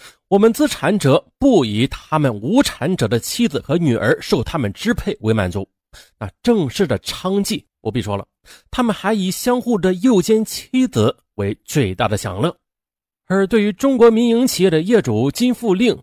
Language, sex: Chinese, male